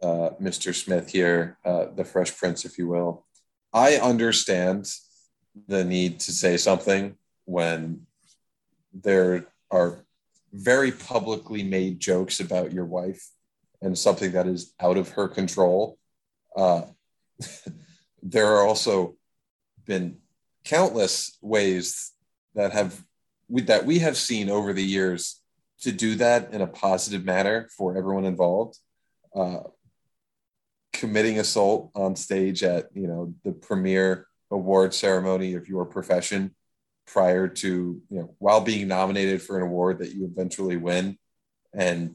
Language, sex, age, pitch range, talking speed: English, male, 30-49, 90-110 Hz, 130 wpm